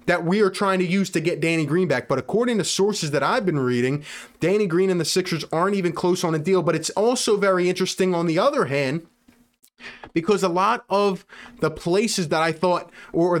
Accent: American